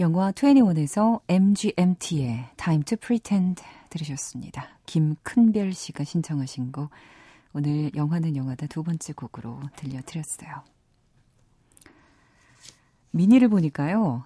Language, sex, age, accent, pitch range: Korean, female, 40-59, native, 140-185 Hz